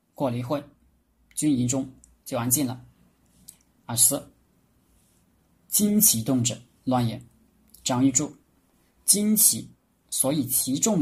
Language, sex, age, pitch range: Chinese, male, 20-39, 90-140 Hz